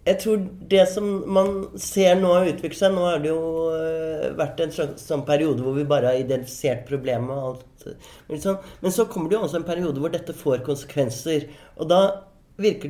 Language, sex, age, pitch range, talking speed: English, male, 30-49, 130-170 Hz, 170 wpm